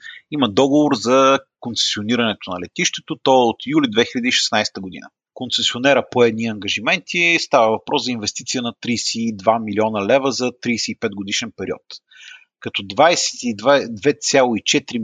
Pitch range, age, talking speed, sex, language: 110-160 Hz, 30-49, 115 wpm, male, Bulgarian